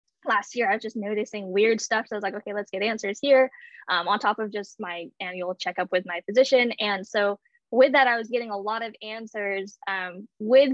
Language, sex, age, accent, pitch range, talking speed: English, female, 10-29, American, 195-245 Hz, 230 wpm